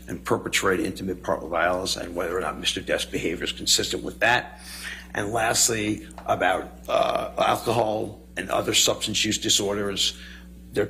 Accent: American